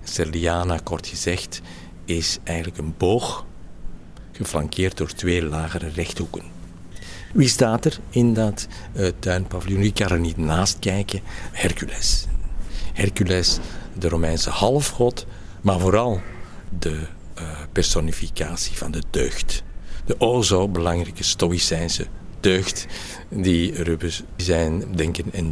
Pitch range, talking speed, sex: 80-100 Hz, 115 wpm, male